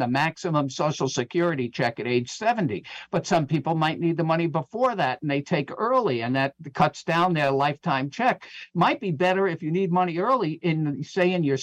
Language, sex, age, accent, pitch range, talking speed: English, male, 50-69, American, 145-185 Hz, 205 wpm